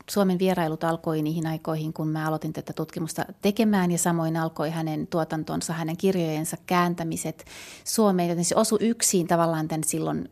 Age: 30-49